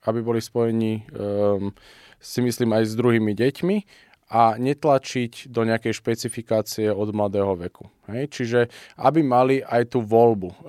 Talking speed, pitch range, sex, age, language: 140 wpm, 120-145 Hz, male, 20-39, Slovak